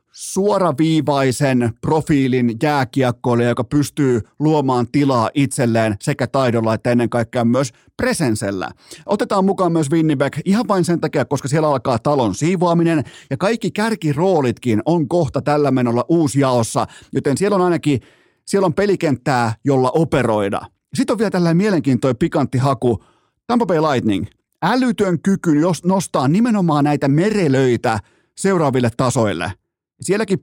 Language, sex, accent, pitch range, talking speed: Finnish, male, native, 125-165 Hz, 130 wpm